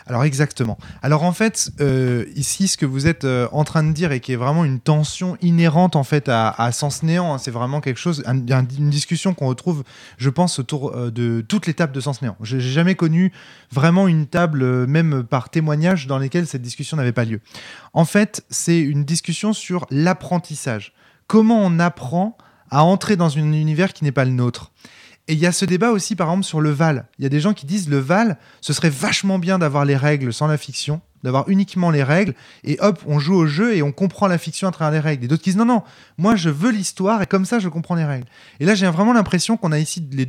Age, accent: 20-39, French